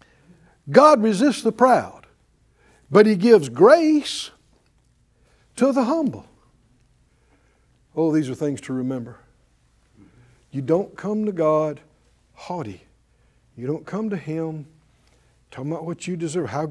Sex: male